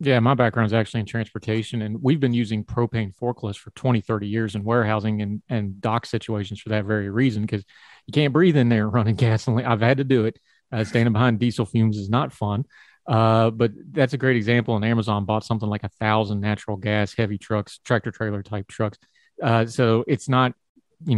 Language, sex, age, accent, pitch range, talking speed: English, male, 30-49, American, 110-125 Hz, 210 wpm